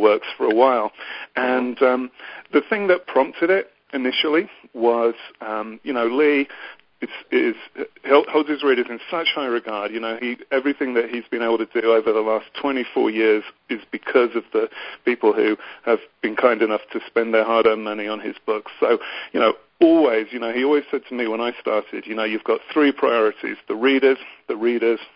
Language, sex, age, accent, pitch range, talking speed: English, male, 40-59, British, 110-145 Hz, 200 wpm